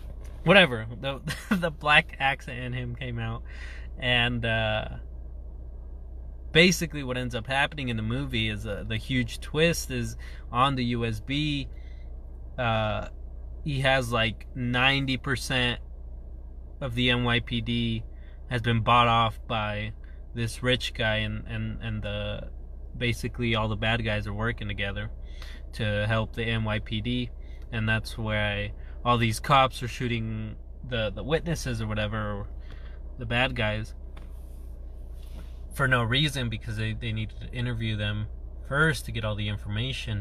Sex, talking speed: male, 140 wpm